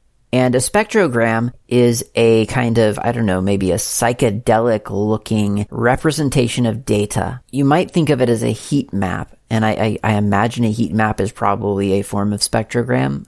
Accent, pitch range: American, 105-125 Hz